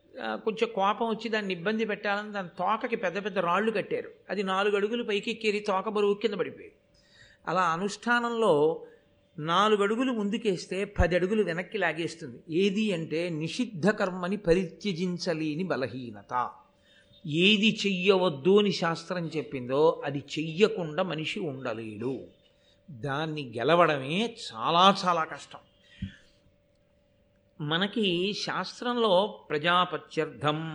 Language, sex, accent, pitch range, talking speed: Telugu, male, native, 165-215 Hz, 105 wpm